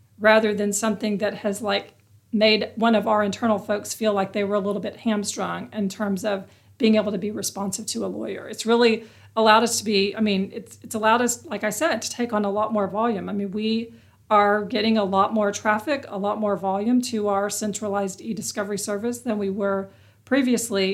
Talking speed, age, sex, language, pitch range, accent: 215 wpm, 40-59, female, English, 195-225 Hz, American